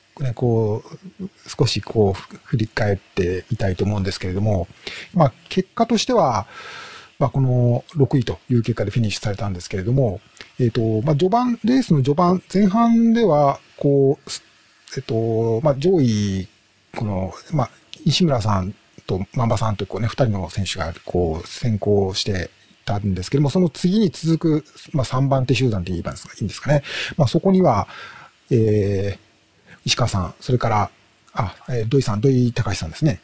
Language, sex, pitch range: Japanese, male, 105-150 Hz